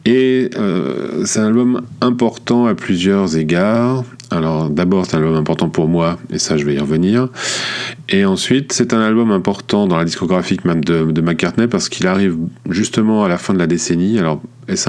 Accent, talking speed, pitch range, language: French, 190 wpm, 80-105 Hz, French